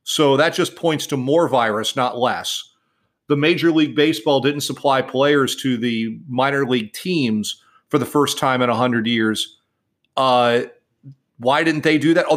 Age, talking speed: 40-59, 170 wpm